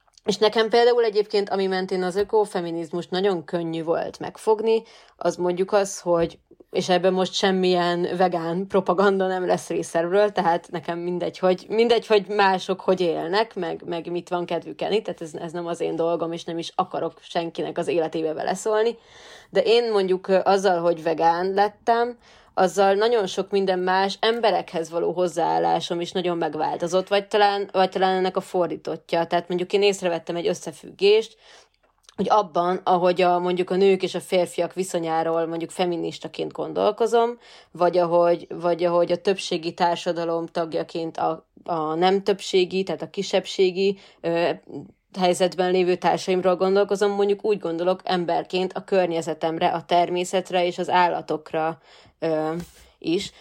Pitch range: 170-195 Hz